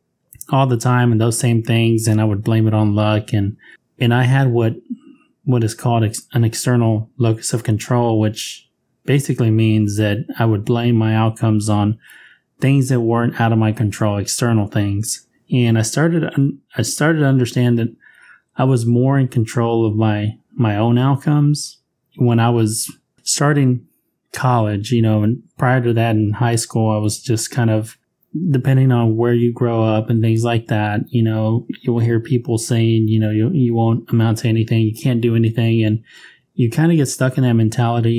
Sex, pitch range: male, 110-130 Hz